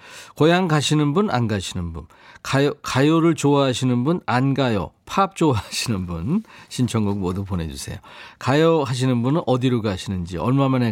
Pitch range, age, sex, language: 105-160 Hz, 40-59, male, Korean